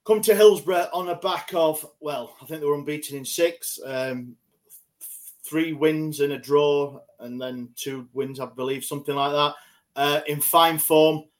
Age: 30-49